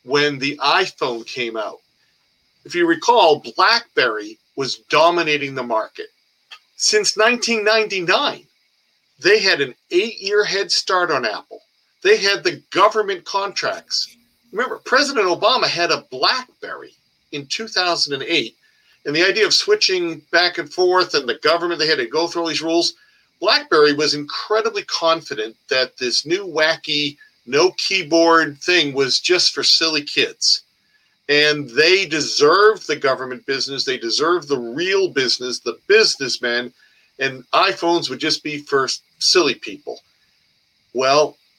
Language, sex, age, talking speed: English, male, 50-69, 135 wpm